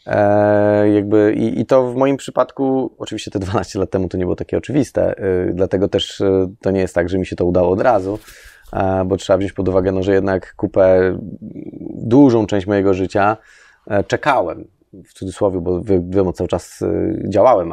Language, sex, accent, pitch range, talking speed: Polish, male, native, 95-110 Hz, 195 wpm